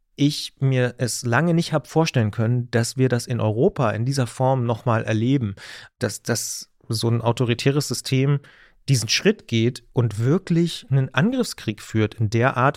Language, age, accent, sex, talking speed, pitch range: German, 30-49, German, male, 170 wpm, 120-145 Hz